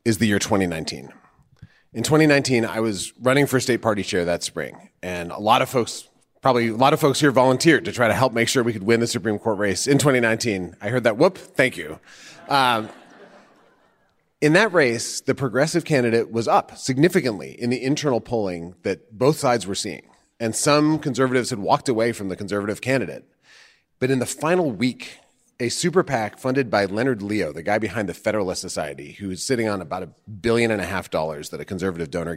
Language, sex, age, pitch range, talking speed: English, male, 30-49, 100-130 Hz, 205 wpm